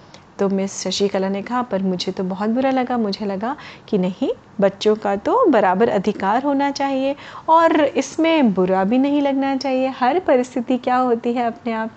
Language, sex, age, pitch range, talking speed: Hindi, female, 30-49, 210-270 Hz, 180 wpm